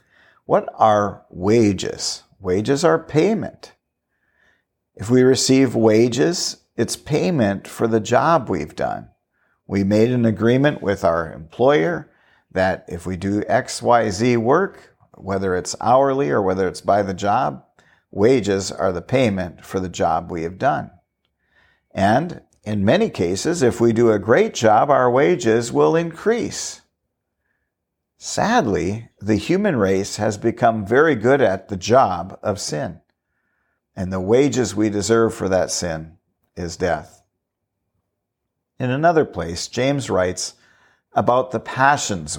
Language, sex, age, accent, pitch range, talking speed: English, male, 50-69, American, 95-120 Hz, 135 wpm